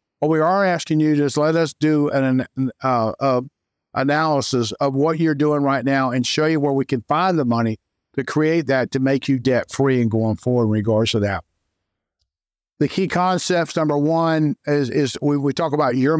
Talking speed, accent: 205 wpm, American